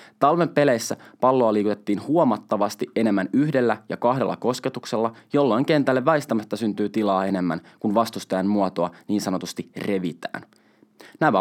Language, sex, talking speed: Finnish, male, 120 wpm